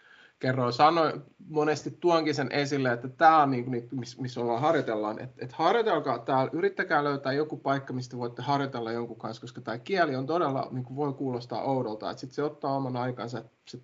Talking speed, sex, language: 185 wpm, male, Finnish